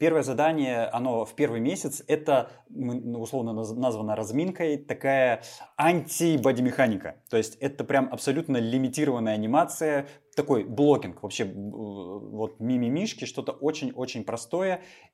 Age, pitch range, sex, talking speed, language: 20-39, 105-140 Hz, male, 105 wpm, Russian